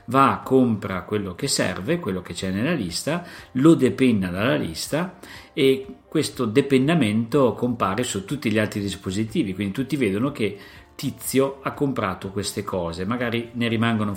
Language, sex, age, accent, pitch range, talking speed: Italian, male, 50-69, native, 100-130 Hz, 150 wpm